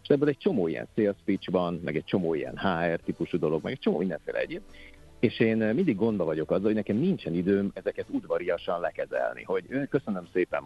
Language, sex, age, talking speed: Hungarian, male, 50-69, 190 wpm